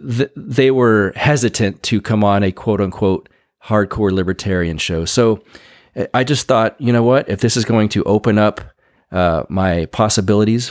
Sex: male